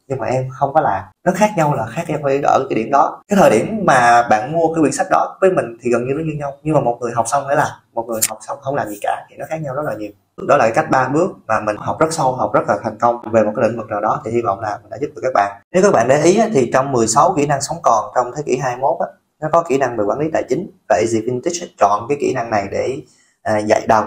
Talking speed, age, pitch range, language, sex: 315 wpm, 20-39, 110-145 Hz, Vietnamese, male